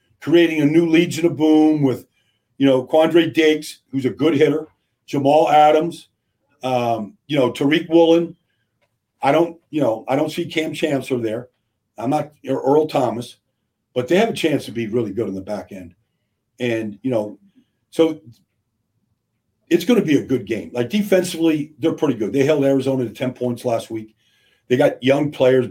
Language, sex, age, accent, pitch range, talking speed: English, male, 50-69, American, 120-155 Hz, 180 wpm